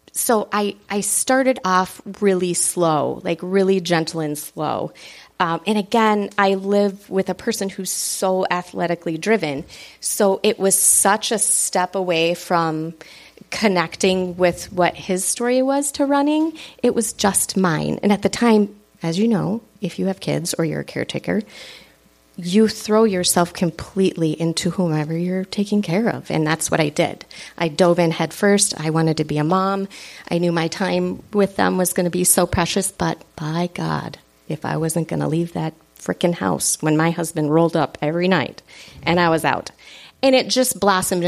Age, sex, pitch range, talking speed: 30-49, female, 165-205 Hz, 180 wpm